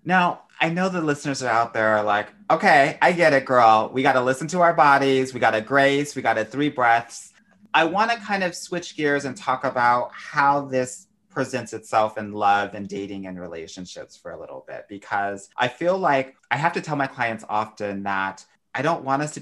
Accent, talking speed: American, 225 wpm